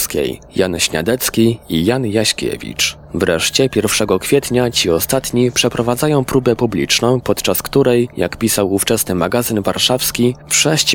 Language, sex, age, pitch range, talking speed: Polish, male, 20-39, 100-125 Hz, 120 wpm